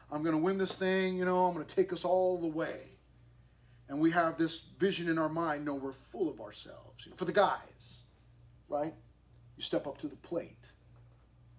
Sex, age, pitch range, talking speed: male, 40-59, 120-180 Hz, 200 wpm